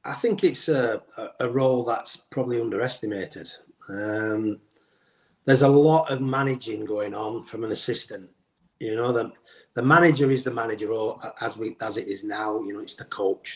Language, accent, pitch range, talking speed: English, British, 125-150 Hz, 175 wpm